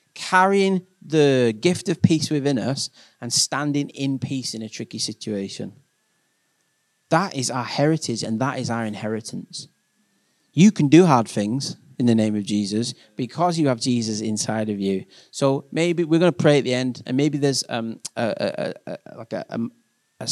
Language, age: English, 30-49